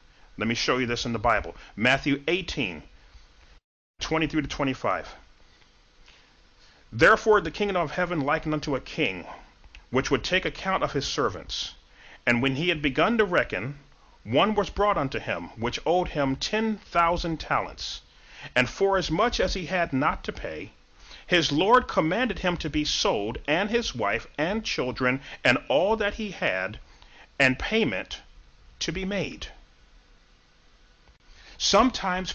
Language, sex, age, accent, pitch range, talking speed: English, male, 40-59, American, 130-180 Hz, 150 wpm